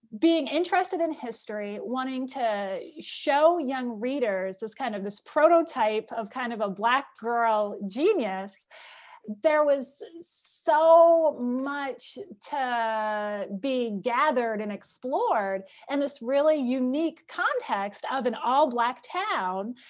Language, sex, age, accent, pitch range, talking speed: English, female, 30-49, American, 225-315 Hz, 120 wpm